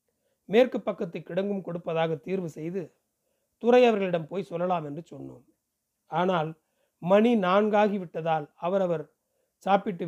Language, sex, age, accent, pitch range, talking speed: Tamil, male, 40-59, native, 165-215 Hz, 95 wpm